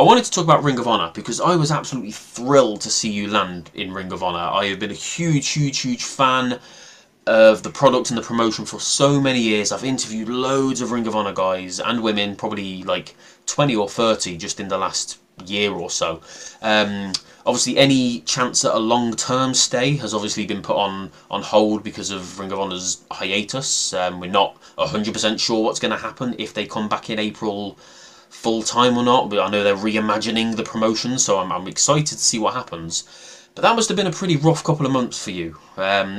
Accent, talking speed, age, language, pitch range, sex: British, 215 wpm, 20-39, English, 105-130 Hz, male